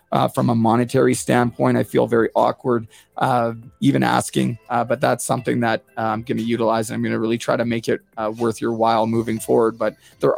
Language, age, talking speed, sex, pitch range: English, 30-49, 215 wpm, male, 110-125 Hz